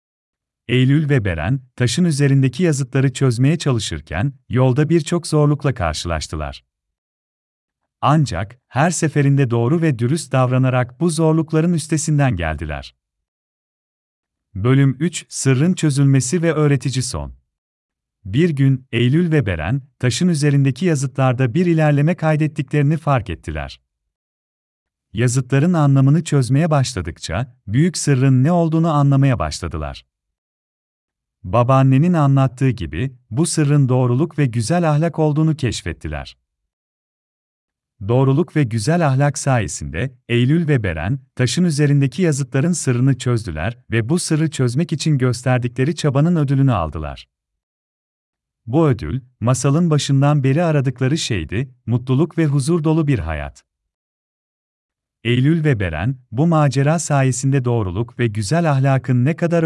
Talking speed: 110 wpm